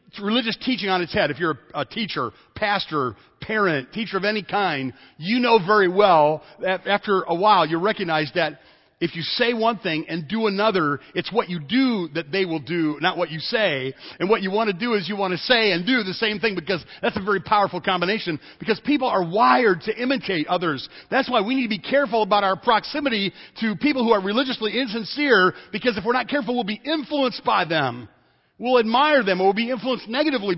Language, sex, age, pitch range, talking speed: English, male, 40-59, 165-235 Hz, 215 wpm